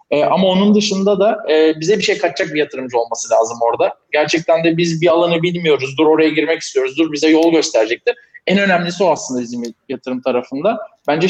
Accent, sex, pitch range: native, male, 150-190 Hz